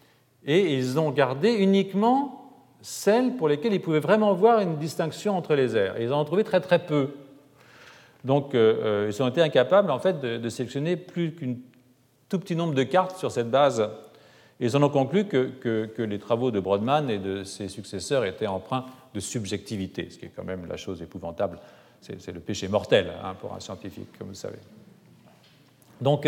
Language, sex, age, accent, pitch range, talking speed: French, male, 40-59, French, 120-170 Hz, 205 wpm